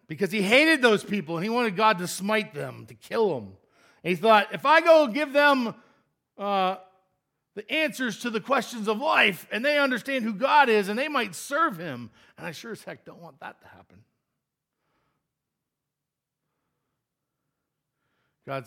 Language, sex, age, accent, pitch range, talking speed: English, male, 50-69, American, 135-205 Hz, 170 wpm